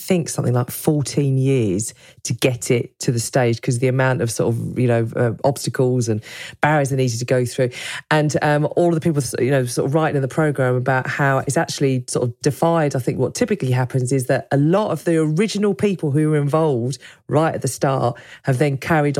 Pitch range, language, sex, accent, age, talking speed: 130-170 Hz, English, female, British, 40-59, 225 wpm